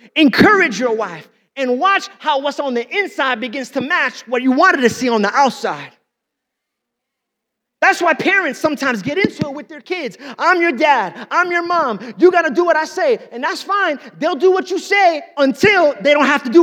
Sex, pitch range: male, 280-380 Hz